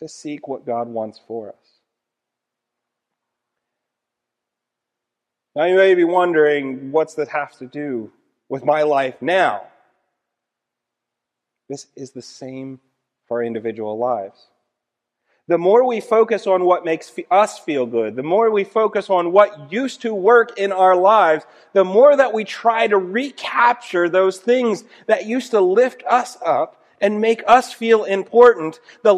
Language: English